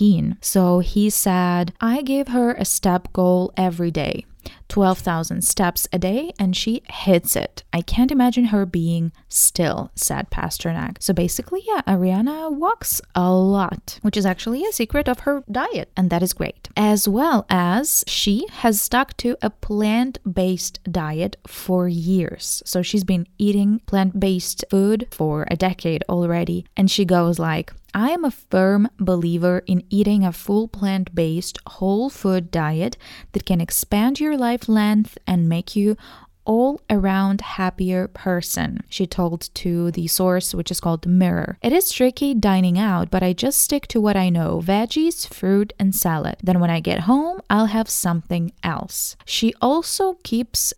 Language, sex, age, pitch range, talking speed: English, female, 20-39, 180-220 Hz, 160 wpm